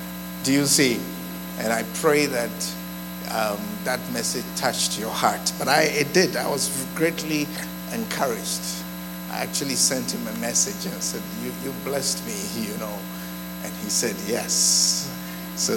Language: English